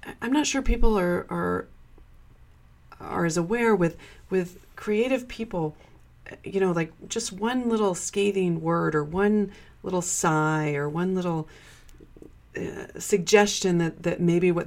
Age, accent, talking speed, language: 30-49, American, 140 wpm, English